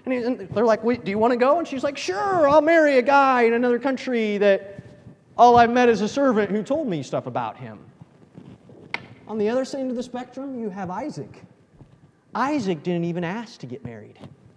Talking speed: 205 wpm